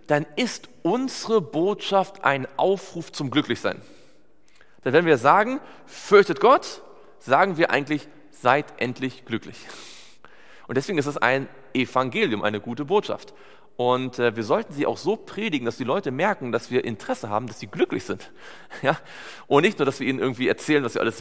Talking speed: 170 wpm